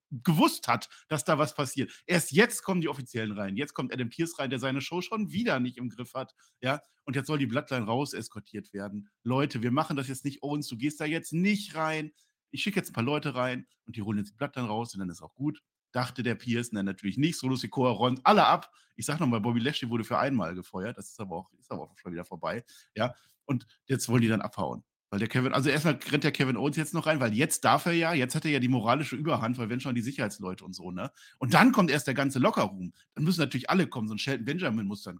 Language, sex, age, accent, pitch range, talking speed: German, male, 50-69, German, 120-155 Hz, 265 wpm